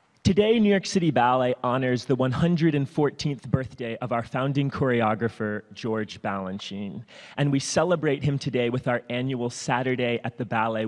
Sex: male